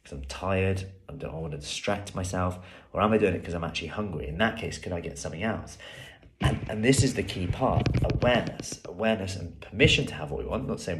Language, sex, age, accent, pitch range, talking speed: English, male, 30-49, British, 80-95 Hz, 245 wpm